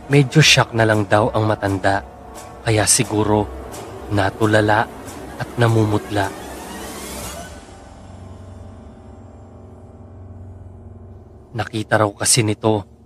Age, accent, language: 30-49, native, Filipino